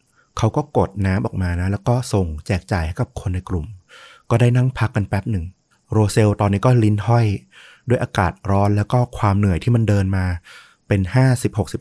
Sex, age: male, 30-49